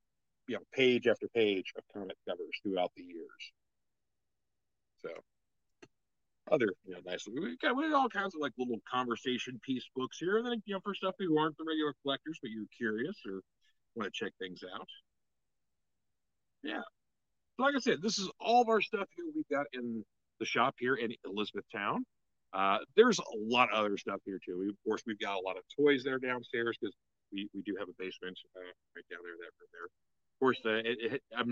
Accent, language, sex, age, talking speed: American, English, male, 50-69, 210 wpm